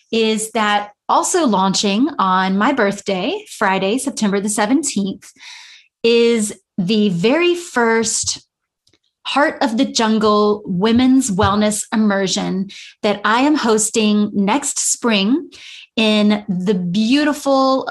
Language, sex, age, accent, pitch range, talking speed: English, female, 30-49, American, 205-250 Hz, 105 wpm